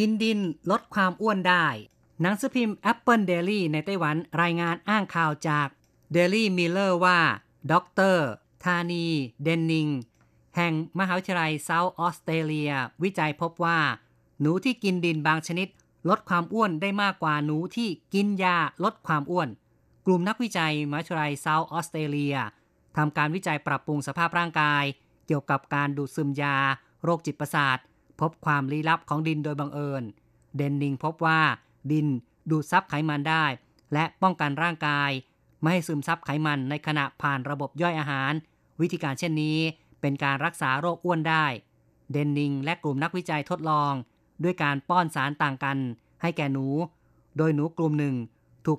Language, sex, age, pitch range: Thai, female, 30-49, 145-175 Hz